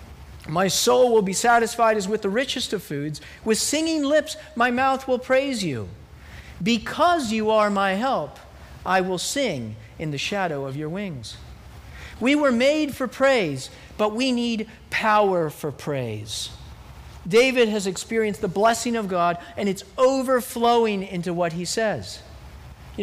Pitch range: 175-255 Hz